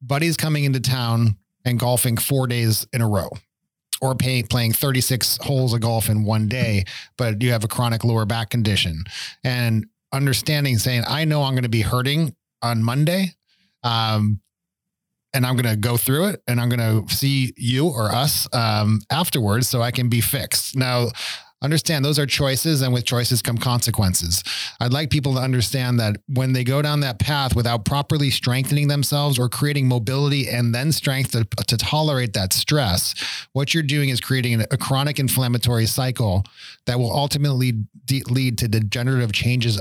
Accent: American